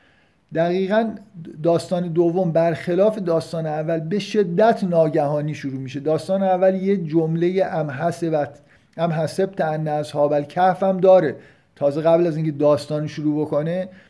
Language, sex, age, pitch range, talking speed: Persian, male, 50-69, 150-195 Hz, 125 wpm